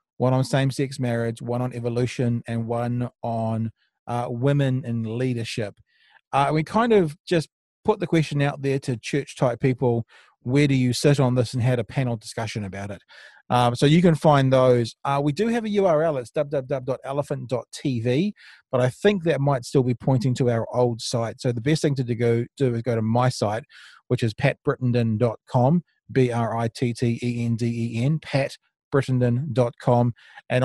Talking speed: 170 wpm